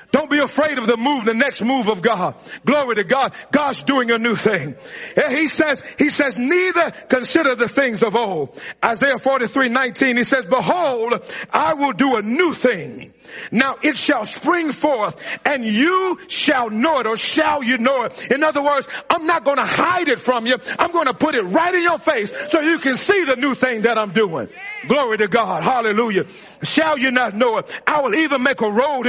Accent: American